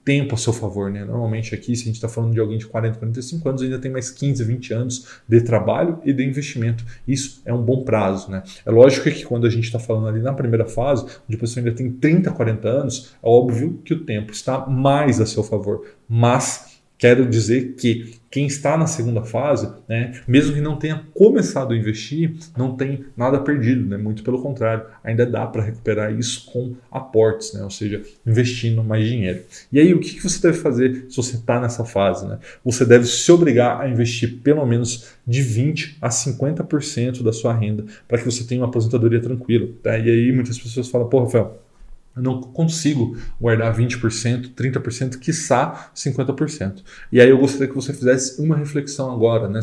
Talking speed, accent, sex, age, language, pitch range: 200 wpm, Brazilian, male, 20-39, Portuguese, 115-135 Hz